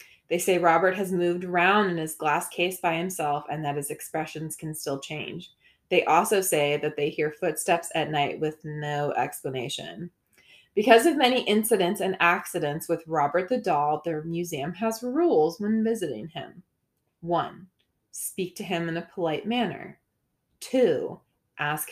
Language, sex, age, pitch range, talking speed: English, female, 20-39, 150-210 Hz, 160 wpm